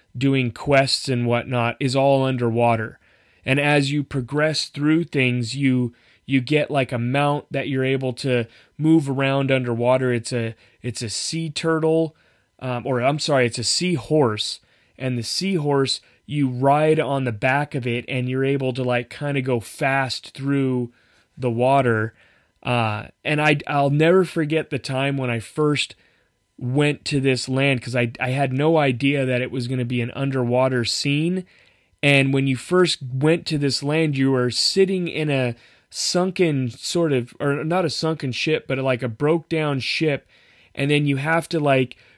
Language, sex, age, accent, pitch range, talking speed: English, male, 30-49, American, 125-150 Hz, 175 wpm